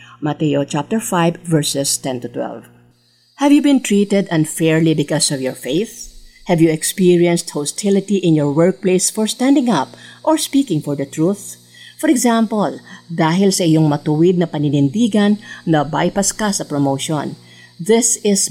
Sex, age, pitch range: female, 50-69, 145-205 Hz